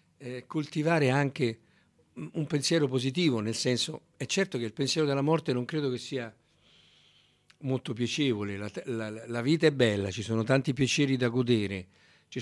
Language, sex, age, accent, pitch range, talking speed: Italian, male, 50-69, native, 100-140 Hz, 160 wpm